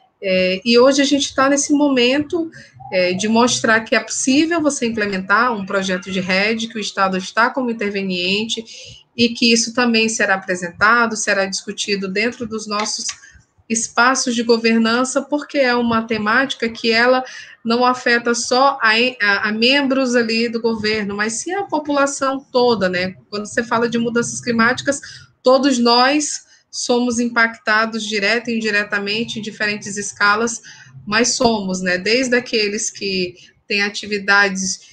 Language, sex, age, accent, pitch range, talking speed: Portuguese, female, 20-39, Brazilian, 200-245 Hz, 150 wpm